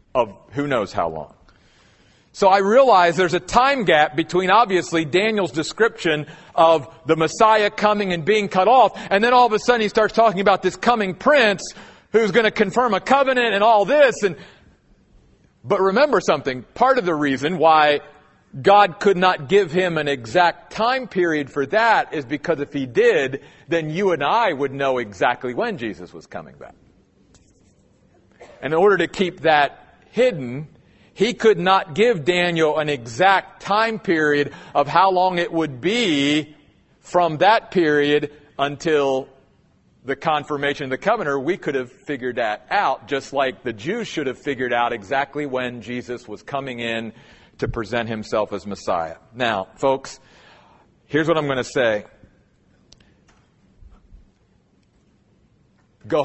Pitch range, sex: 135-200 Hz, male